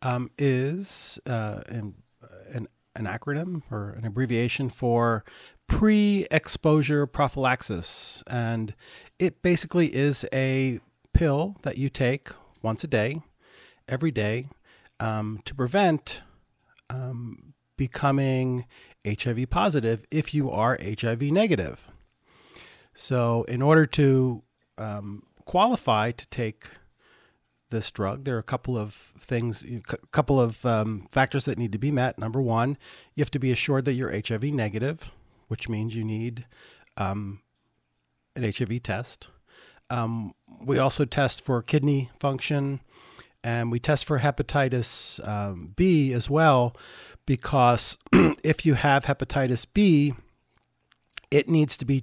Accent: American